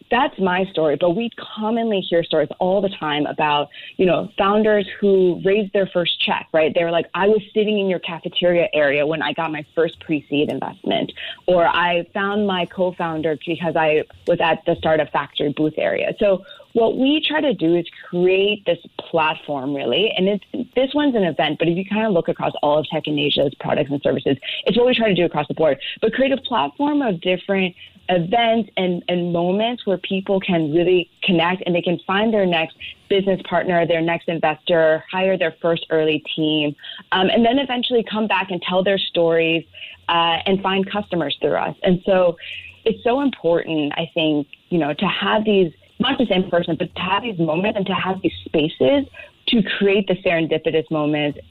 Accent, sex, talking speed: American, female, 200 wpm